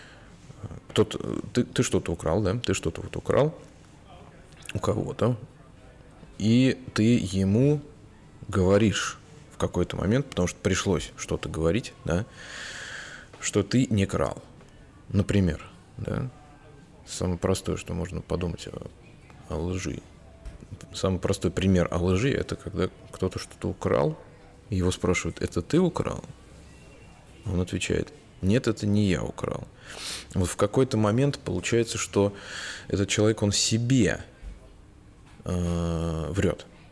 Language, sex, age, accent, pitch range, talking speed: Russian, male, 20-39, native, 90-115 Hz, 110 wpm